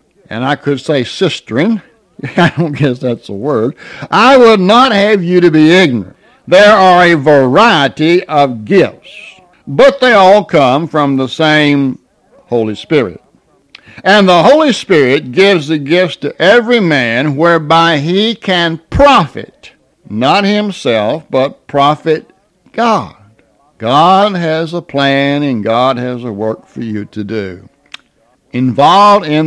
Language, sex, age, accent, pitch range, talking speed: English, male, 60-79, American, 125-180 Hz, 140 wpm